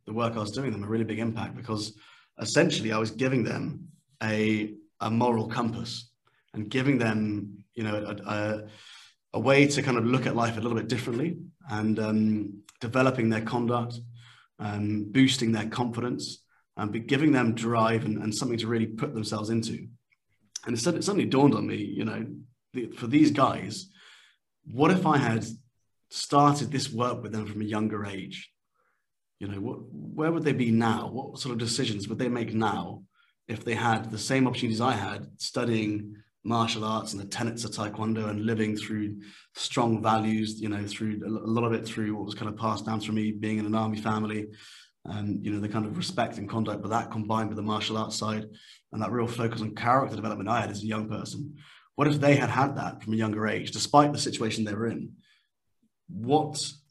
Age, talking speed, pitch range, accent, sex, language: 30-49, 200 wpm, 105-120 Hz, British, male, English